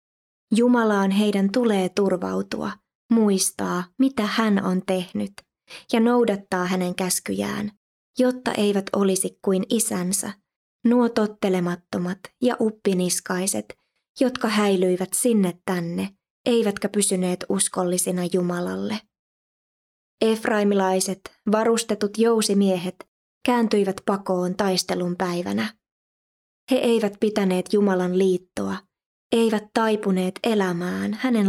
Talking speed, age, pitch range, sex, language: 90 wpm, 20-39, 180-220 Hz, female, Finnish